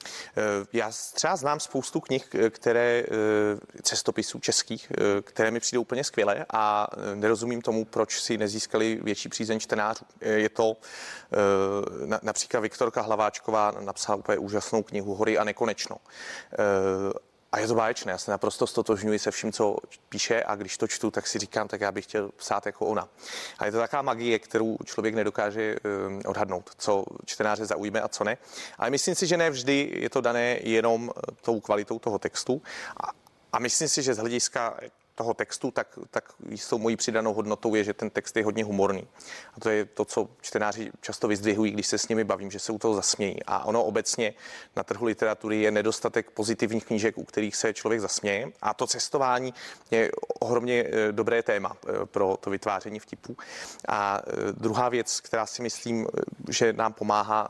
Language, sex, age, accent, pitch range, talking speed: Czech, male, 30-49, native, 105-115 Hz, 170 wpm